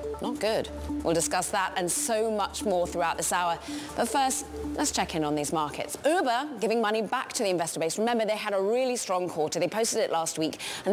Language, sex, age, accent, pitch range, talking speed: English, female, 20-39, British, 175-255 Hz, 225 wpm